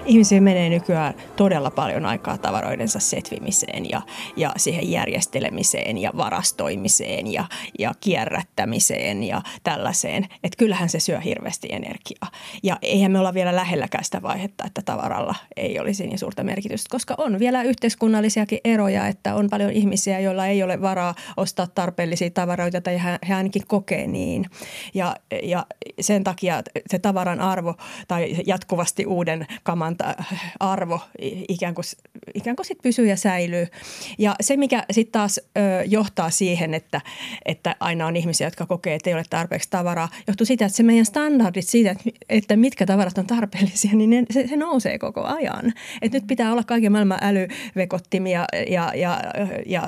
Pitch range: 175-215 Hz